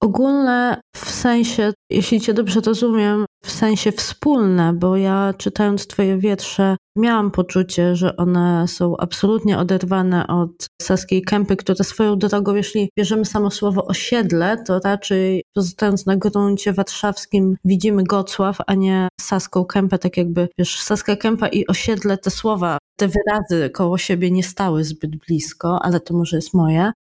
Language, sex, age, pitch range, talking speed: Polish, female, 20-39, 185-210 Hz, 150 wpm